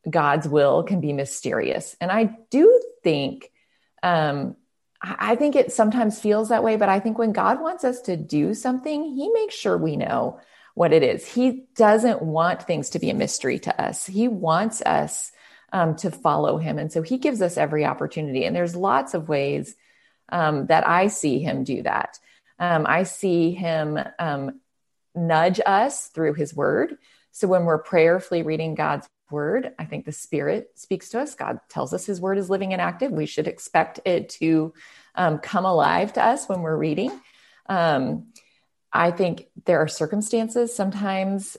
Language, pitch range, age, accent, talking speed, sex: English, 160-225 Hz, 30-49, American, 180 wpm, female